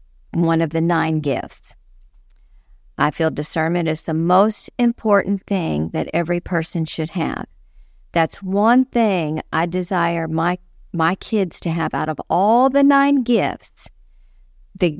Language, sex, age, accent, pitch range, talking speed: English, female, 50-69, American, 160-205 Hz, 140 wpm